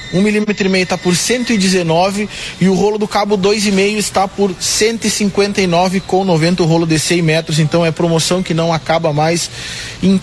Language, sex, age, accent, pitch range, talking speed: Portuguese, male, 20-39, Brazilian, 180-220 Hz, 205 wpm